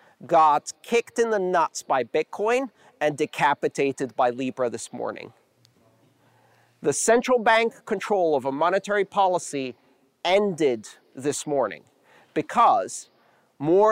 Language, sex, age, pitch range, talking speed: English, male, 40-59, 140-210 Hz, 110 wpm